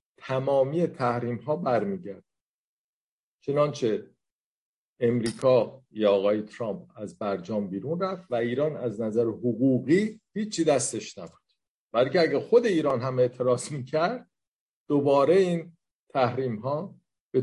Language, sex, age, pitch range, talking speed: Persian, male, 50-69, 105-160 Hz, 115 wpm